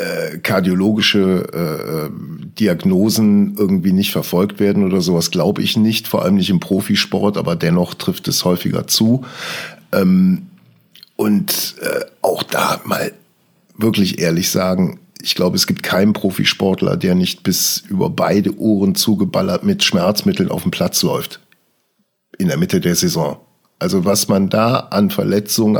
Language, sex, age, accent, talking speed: German, male, 50-69, German, 145 wpm